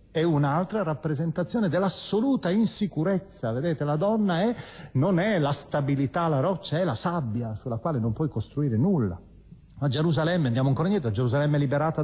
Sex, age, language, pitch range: male, 40-59, Italian, 120-175 Hz